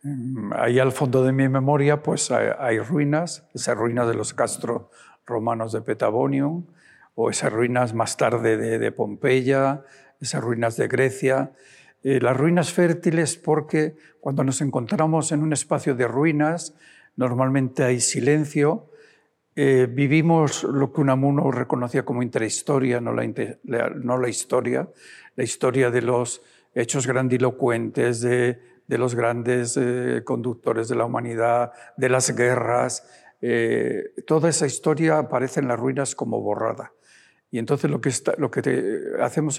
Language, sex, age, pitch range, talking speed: Spanish, male, 60-79, 125-155 Hz, 145 wpm